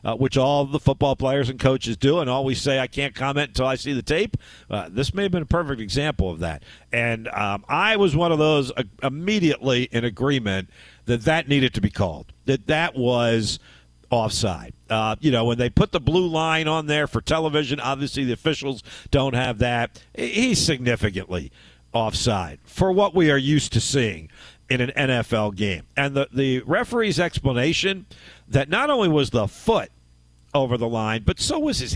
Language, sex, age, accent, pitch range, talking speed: English, male, 50-69, American, 115-170 Hz, 190 wpm